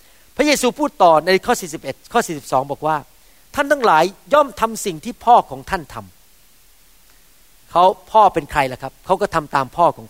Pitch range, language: 160-235 Hz, Thai